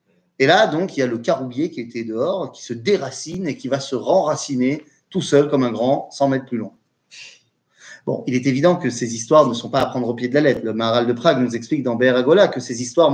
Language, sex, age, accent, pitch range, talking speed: French, male, 30-49, French, 130-175 Hz, 255 wpm